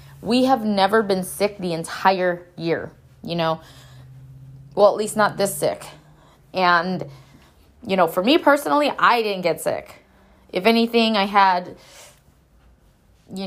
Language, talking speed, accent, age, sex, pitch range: English, 140 wpm, American, 20-39, female, 170-205 Hz